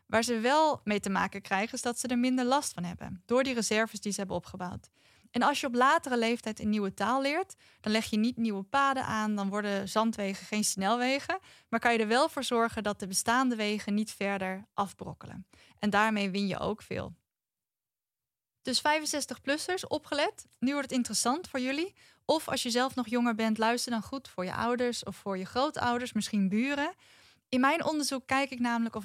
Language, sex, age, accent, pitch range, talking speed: Dutch, female, 10-29, Dutch, 205-255 Hz, 205 wpm